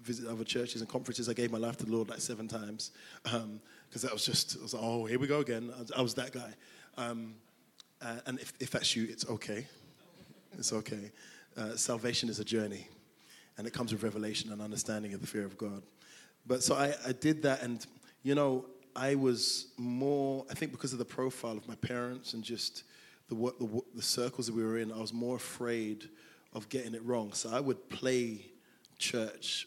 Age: 20-39